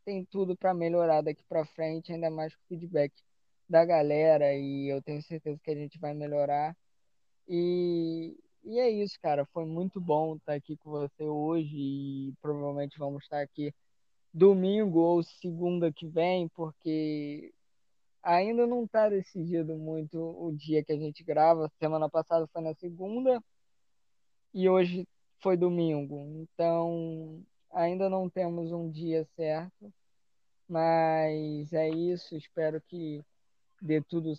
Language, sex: Portuguese, female